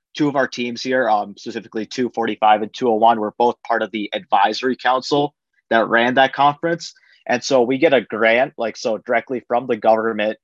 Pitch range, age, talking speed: 110-130 Hz, 30-49, 190 wpm